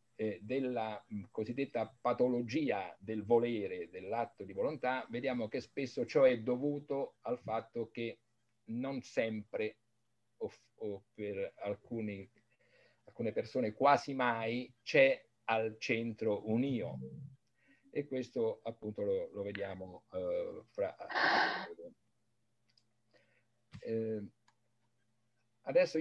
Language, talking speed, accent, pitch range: Italian, 100 wpm, native, 115-160 Hz